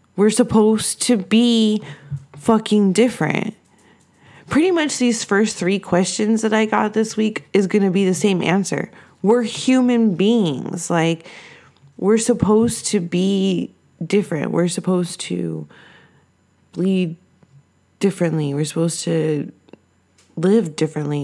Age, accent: 20-39, American